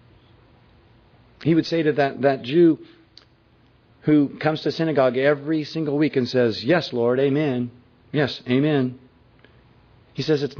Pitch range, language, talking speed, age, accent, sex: 115-145 Hz, English, 135 wpm, 40-59, American, male